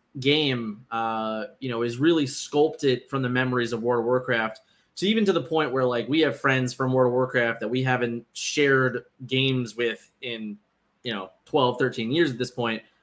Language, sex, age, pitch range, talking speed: English, male, 20-39, 115-135 Hz, 195 wpm